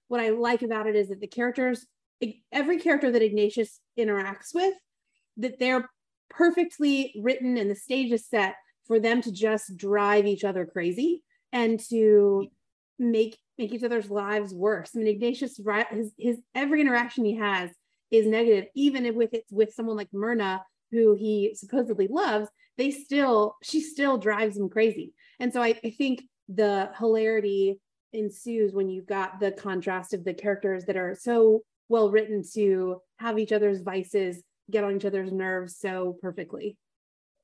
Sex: female